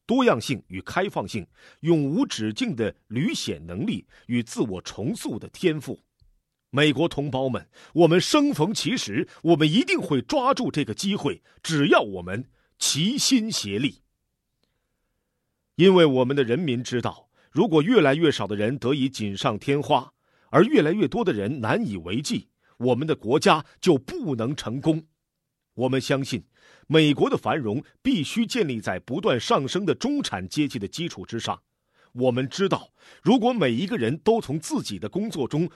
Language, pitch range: Chinese, 125-180 Hz